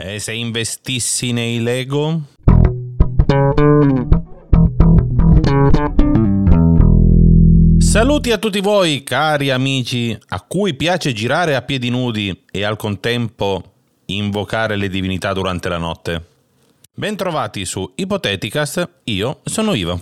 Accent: native